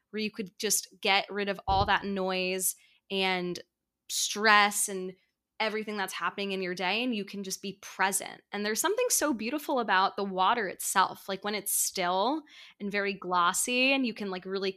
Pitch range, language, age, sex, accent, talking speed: 185-210 Hz, English, 10-29, female, American, 185 wpm